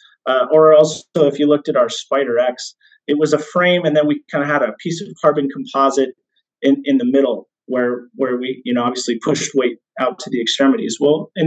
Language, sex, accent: English, male, American